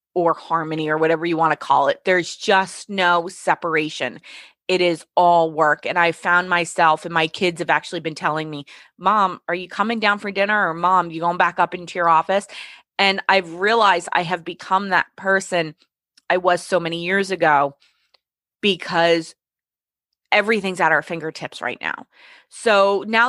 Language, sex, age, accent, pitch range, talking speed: English, female, 20-39, American, 175-225 Hz, 175 wpm